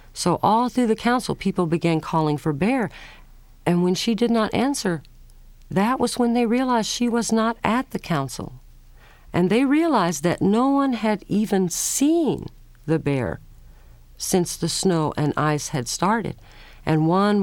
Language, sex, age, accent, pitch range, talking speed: English, female, 50-69, American, 145-205 Hz, 160 wpm